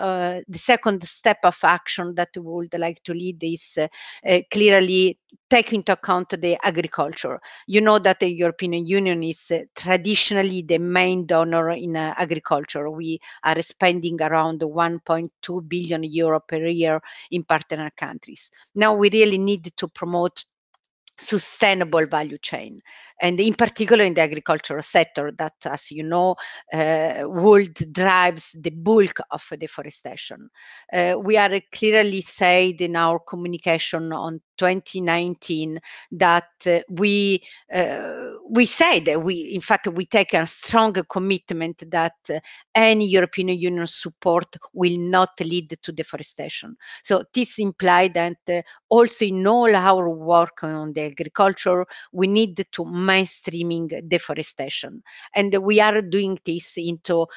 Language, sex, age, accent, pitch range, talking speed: English, female, 50-69, Italian, 165-200 Hz, 140 wpm